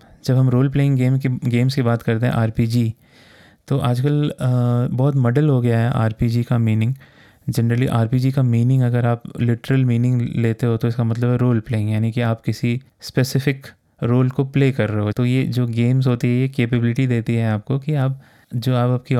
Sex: male